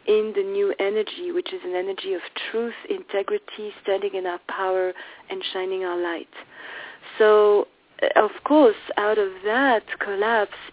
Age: 40-59